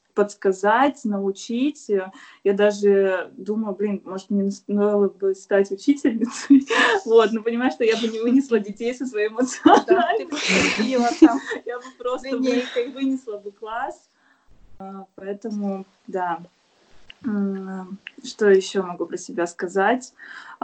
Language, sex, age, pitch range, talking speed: Russian, female, 20-39, 195-240 Hz, 110 wpm